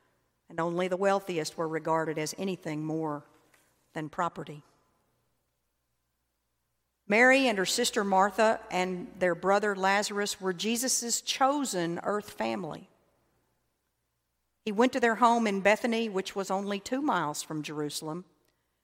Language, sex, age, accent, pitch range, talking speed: English, female, 50-69, American, 155-220 Hz, 125 wpm